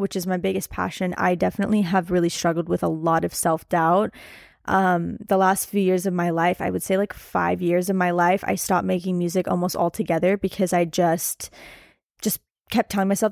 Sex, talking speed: female, 205 wpm